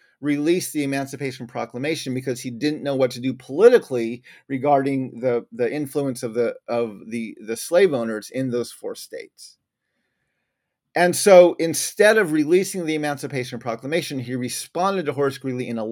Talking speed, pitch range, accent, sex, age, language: 155 wpm, 135-230 Hz, American, male, 40-59, English